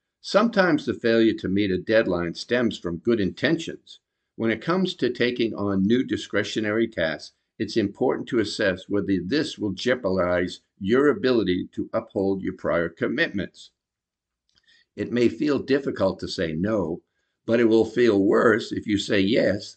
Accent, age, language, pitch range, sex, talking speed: American, 60-79, English, 95-120 Hz, male, 155 wpm